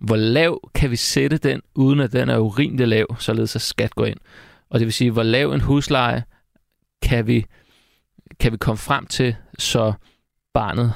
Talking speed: 180 wpm